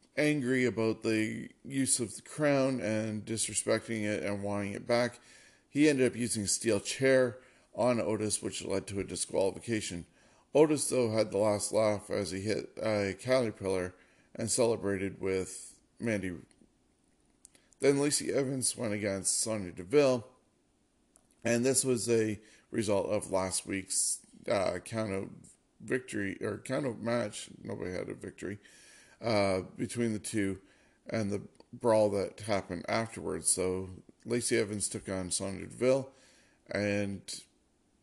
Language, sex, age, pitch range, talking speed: English, male, 40-59, 100-125 Hz, 140 wpm